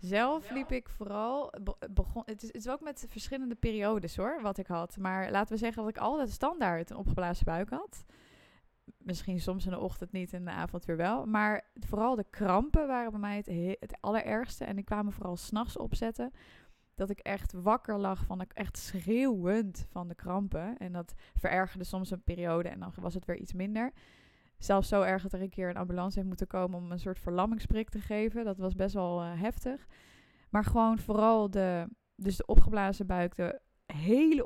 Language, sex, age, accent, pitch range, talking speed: Dutch, female, 20-39, Dutch, 180-220 Hz, 205 wpm